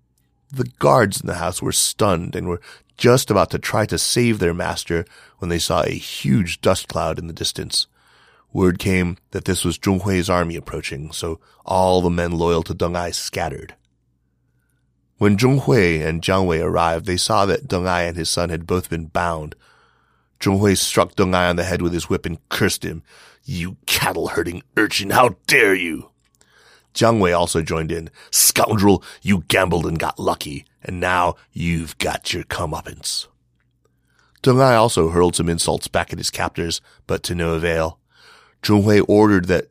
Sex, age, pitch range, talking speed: male, 30-49, 80-95 Hz, 180 wpm